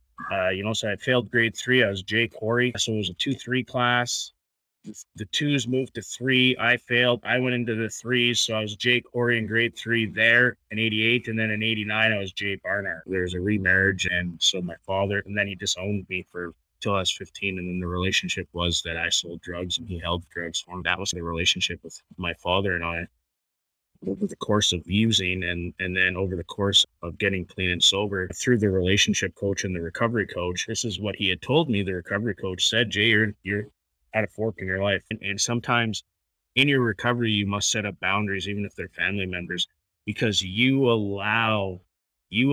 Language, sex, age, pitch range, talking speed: English, male, 20-39, 90-115 Hz, 220 wpm